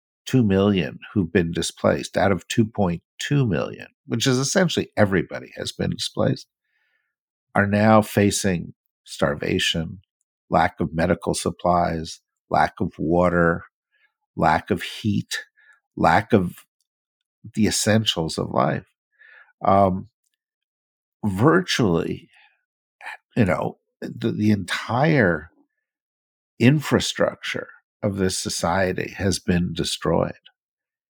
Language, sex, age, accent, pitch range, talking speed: English, male, 50-69, American, 85-130 Hz, 95 wpm